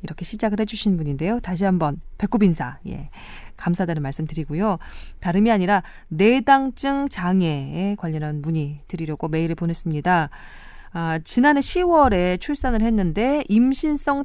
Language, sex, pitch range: Korean, female, 170-255 Hz